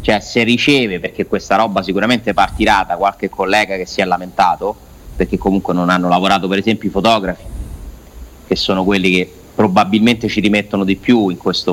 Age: 30-49